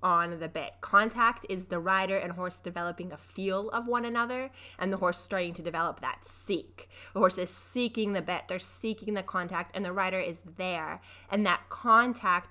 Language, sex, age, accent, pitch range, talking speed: English, female, 20-39, American, 175-215 Hz, 195 wpm